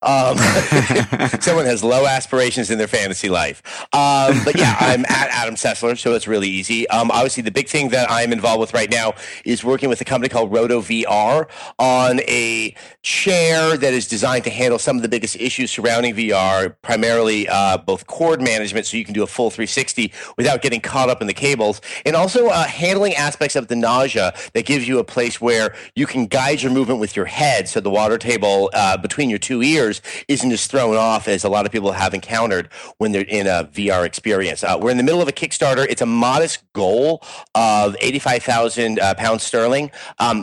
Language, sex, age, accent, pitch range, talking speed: English, male, 40-59, American, 110-135 Hz, 205 wpm